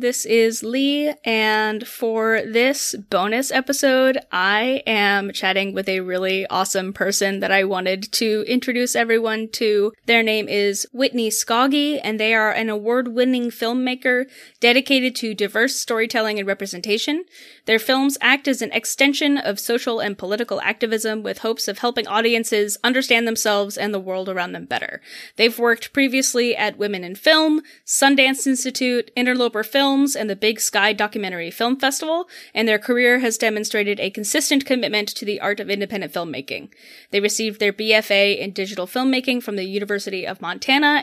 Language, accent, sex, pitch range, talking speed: English, American, female, 205-255 Hz, 160 wpm